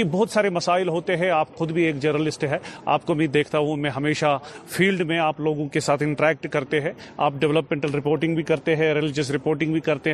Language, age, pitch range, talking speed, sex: Urdu, 30-49, 160-190 Hz, 220 wpm, male